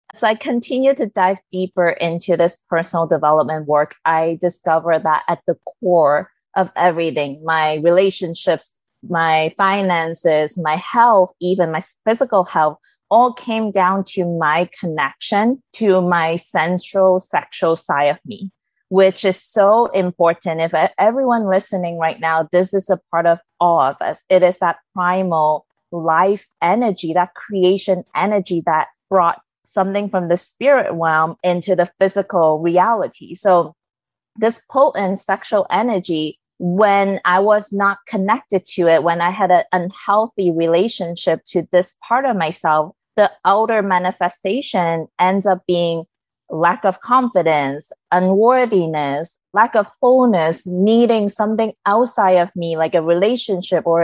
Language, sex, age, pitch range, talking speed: English, female, 20-39, 170-205 Hz, 140 wpm